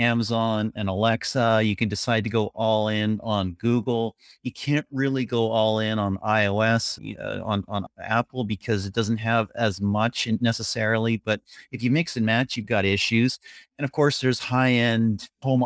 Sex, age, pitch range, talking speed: male, 40-59, 100-120 Hz, 180 wpm